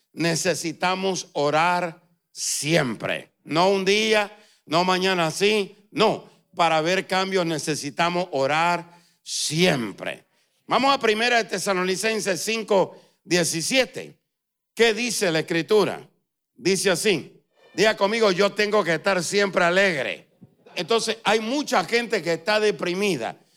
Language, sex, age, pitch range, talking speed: Spanish, male, 60-79, 180-220 Hz, 105 wpm